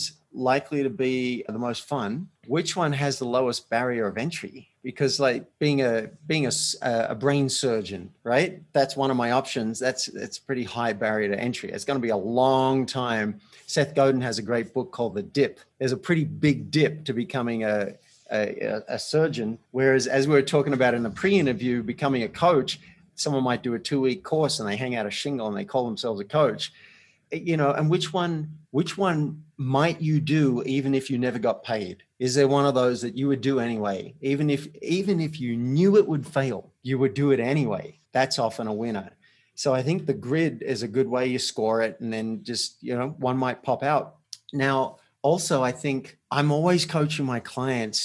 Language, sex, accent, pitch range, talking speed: English, male, Australian, 120-145 Hz, 210 wpm